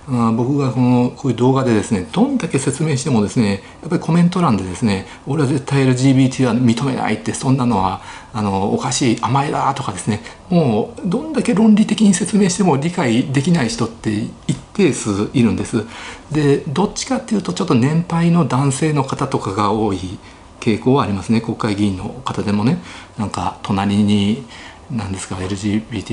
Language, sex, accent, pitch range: Japanese, male, native, 105-140 Hz